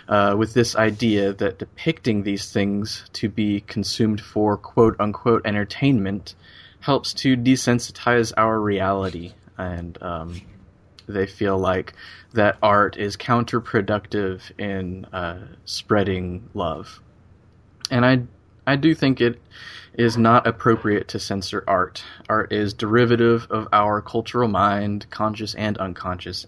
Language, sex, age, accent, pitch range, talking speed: English, male, 20-39, American, 95-115 Hz, 125 wpm